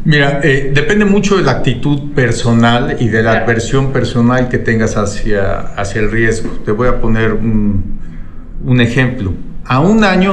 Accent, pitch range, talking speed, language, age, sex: Mexican, 115-150 Hz, 170 wpm, Spanish, 50-69, male